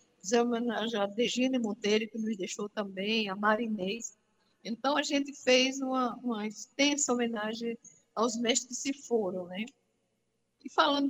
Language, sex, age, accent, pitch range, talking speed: Portuguese, female, 60-79, Brazilian, 205-250 Hz, 145 wpm